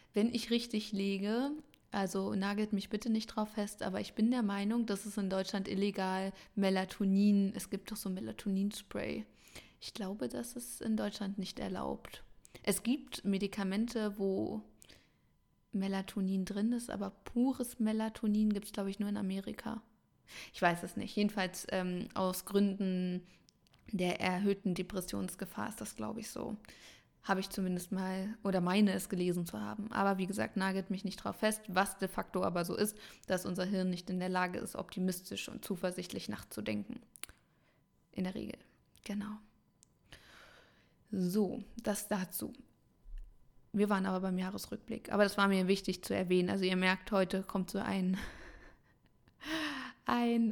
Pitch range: 185-215 Hz